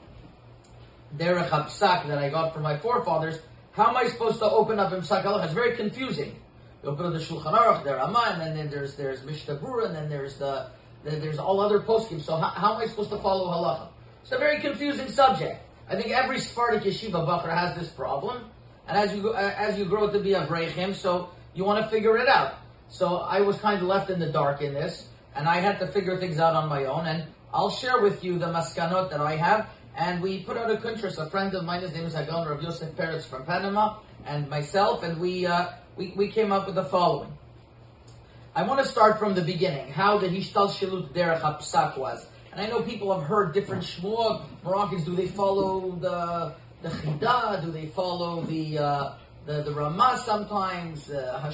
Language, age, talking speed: English, 30-49, 205 wpm